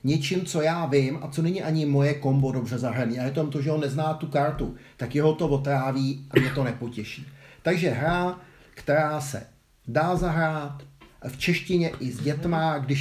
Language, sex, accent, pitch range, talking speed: Czech, male, native, 135-160 Hz, 195 wpm